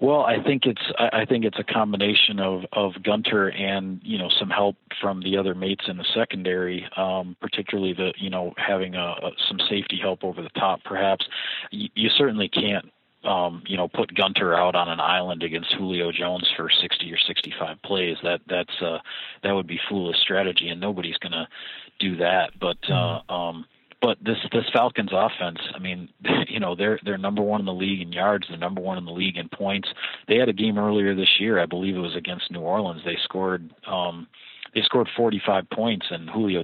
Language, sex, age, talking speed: English, male, 40-59, 205 wpm